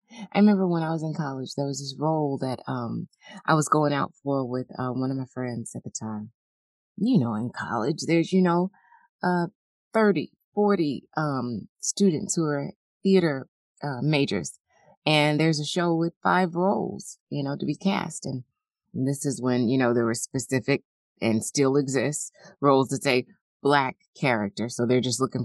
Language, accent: English, American